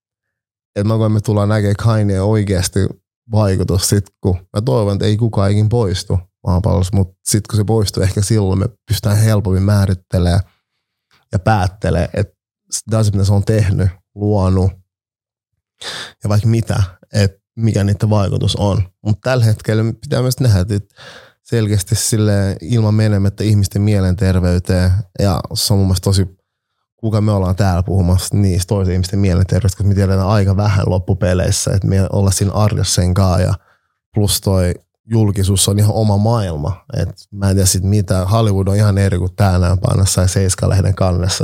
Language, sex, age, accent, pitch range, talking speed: Finnish, male, 30-49, native, 95-110 Hz, 150 wpm